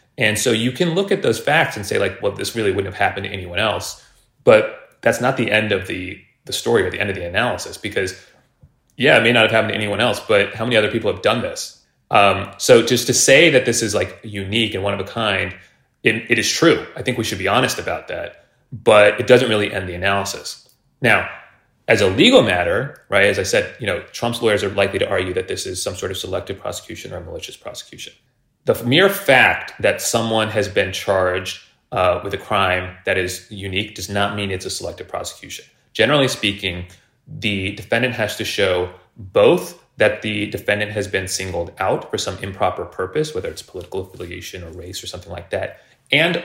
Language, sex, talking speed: English, male, 215 wpm